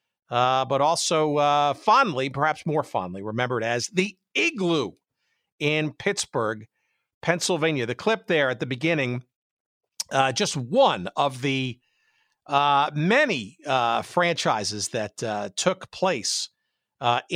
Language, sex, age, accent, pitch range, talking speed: English, male, 50-69, American, 130-175 Hz, 120 wpm